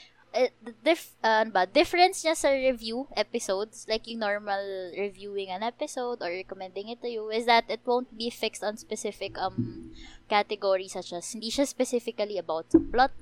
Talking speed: 170 wpm